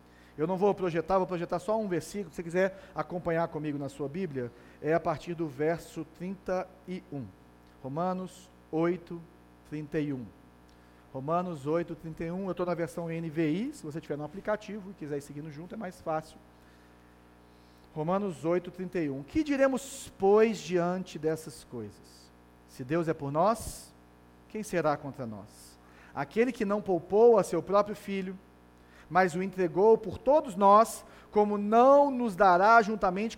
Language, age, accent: Portuguese, 40-59, Brazilian